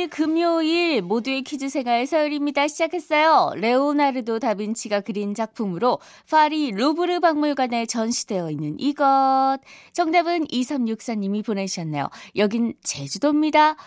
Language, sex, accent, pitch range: Korean, female, native, 210-300 Hz